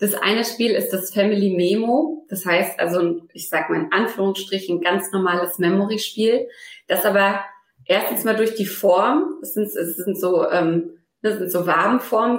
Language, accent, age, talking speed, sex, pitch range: German, German, 20-39, 145 wpm, female, 190-225 Hz